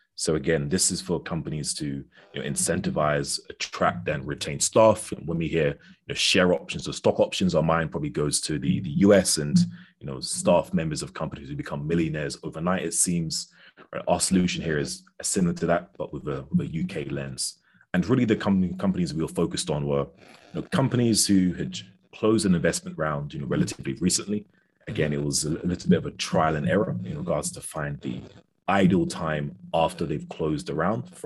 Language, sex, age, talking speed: English, male, 30-49, 205 wpm